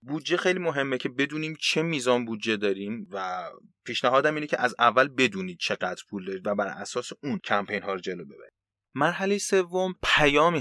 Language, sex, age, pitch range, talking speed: Persian, male, 30-49, 105-145 Hz, 180 wpm